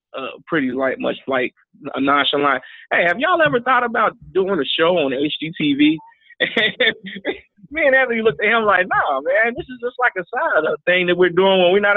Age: 30-49